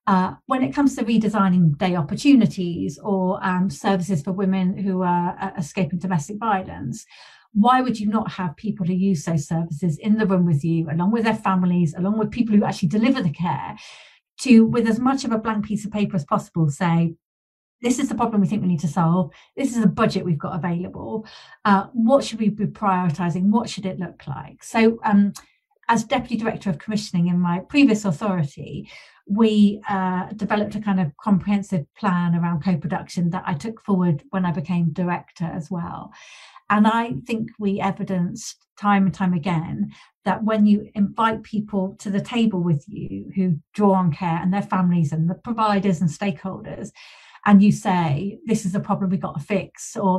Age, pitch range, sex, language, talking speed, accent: 40-59, 180-215 Hz, female, English, 190 wpm, British